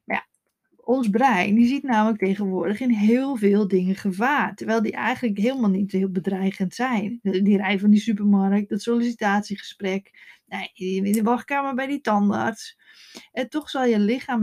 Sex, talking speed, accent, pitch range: female, 150 wpm, Dutch, 195-245 Hz